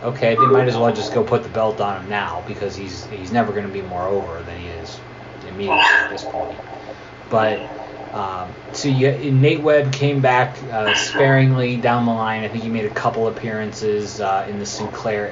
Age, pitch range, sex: 20-39, 100-130 Hz, male